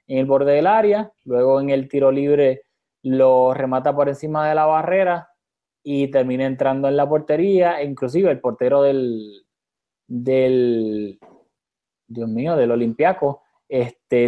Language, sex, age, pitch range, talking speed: Spanish, male, 20-39, 130-155 Hz, 140 wpm